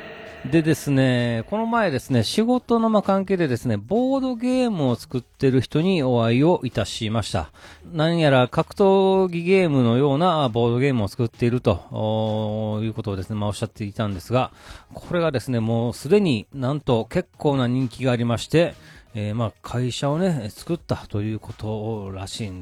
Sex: male